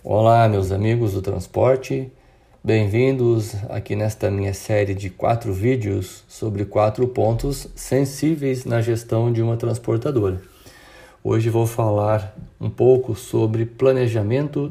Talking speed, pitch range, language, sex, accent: 120 wpm, 105-130 Hz, Portuguese, male, Brazilian